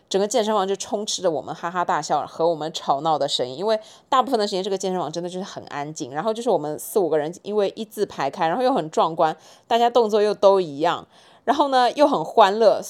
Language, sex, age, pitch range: Chinese, female, 20-39, 170-230 Hz